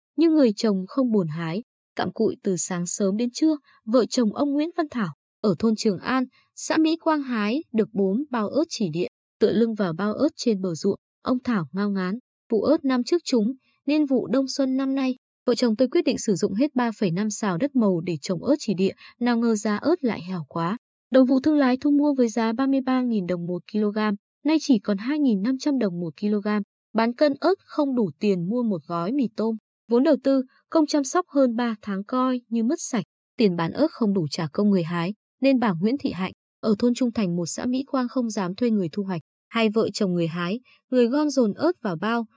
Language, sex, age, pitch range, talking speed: Vietnamese, female, 20-39, 200-265 Hz, 230 wpm